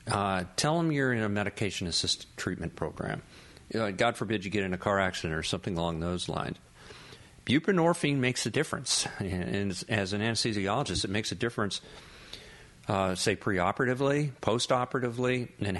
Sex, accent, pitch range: male, American, 90-115 Hz